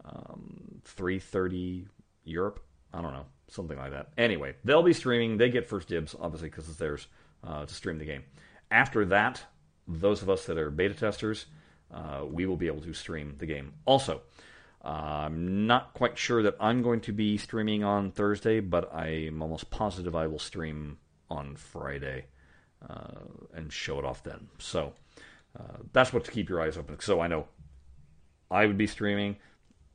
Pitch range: 80-110 Hz